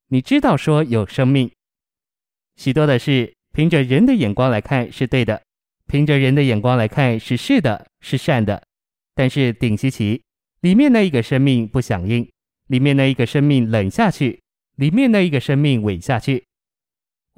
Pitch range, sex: 115-145 Hz, male